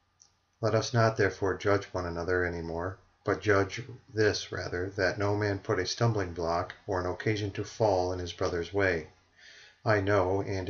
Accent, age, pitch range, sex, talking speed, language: American, 40-59, 95-105 Hz, male, 180 wpm, English